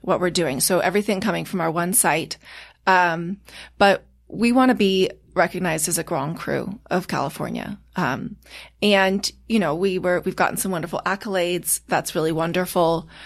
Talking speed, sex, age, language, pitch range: 165 wpm, female, 30-49, English, 165-195 Hz